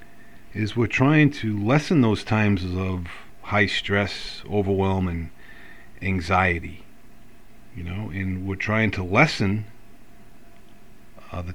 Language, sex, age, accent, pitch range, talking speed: English, male, 40-59, American, 95-120 Hz, 115 wpm